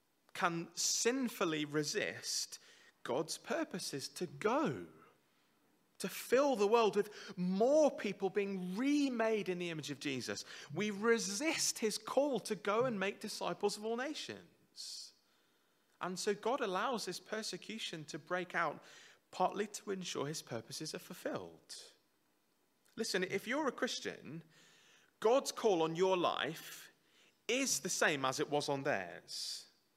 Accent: British